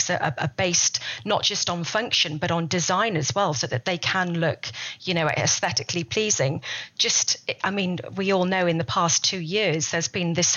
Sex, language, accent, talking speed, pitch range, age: female, English, British, 200 wpm, 155-180 Hz, 40-59